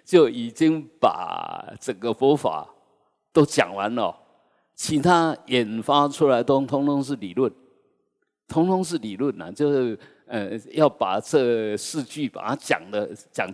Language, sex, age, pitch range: Chinese, male, 50-69, 115-155 Hz